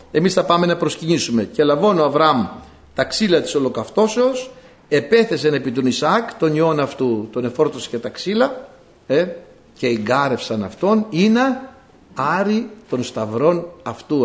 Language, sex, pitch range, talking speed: Greek, male, 115-185 Hz, 145 wpm